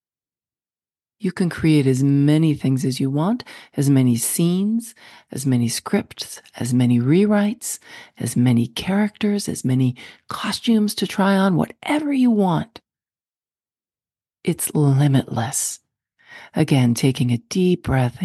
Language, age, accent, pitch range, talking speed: English, 40-59, American, 130-170 Hz, 120 wpm